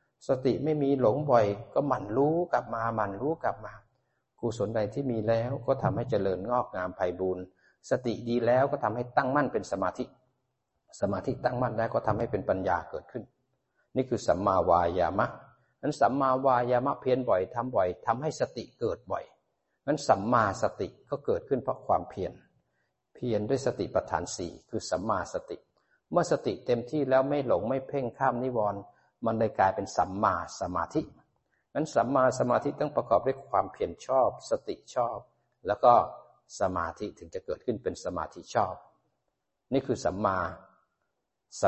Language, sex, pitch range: Thai, male, 115-135 Hz